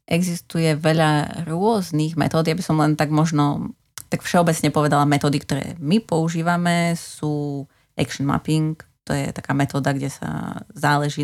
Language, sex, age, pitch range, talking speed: Slovak, female, 30-49, 145-170 Hz, 140 wpm